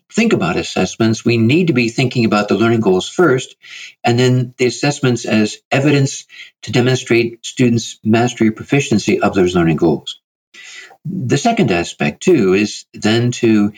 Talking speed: 150 wpm